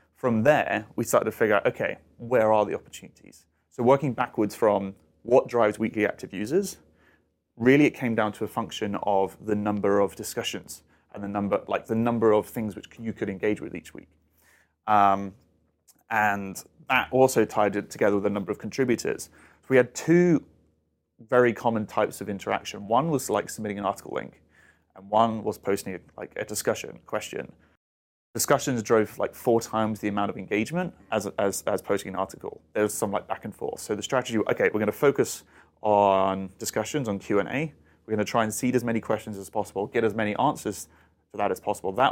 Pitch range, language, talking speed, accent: 100-120 Hz, English, 200 wpm, British